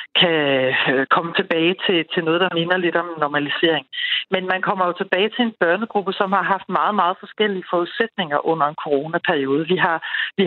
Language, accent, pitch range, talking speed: Danish, native, 170-210 Hz, 185 wpm